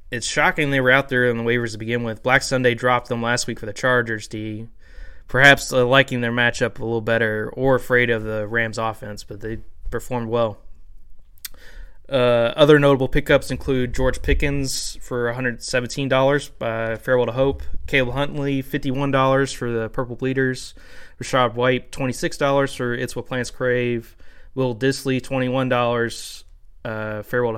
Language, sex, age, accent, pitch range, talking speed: English, male, 20-39, American, 110-130 Hz, 155 wpm